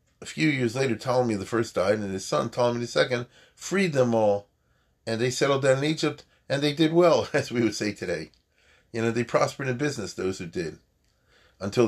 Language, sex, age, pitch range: English, male, 40-59, 100-130 Hz